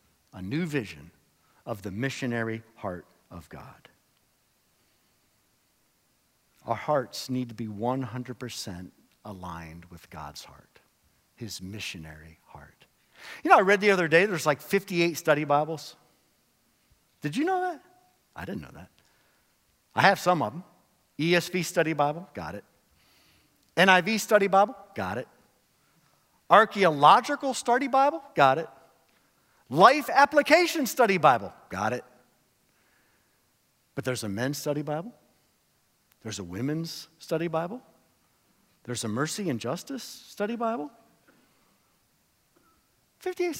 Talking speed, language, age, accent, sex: 120 wpm, English, 50-69, American, male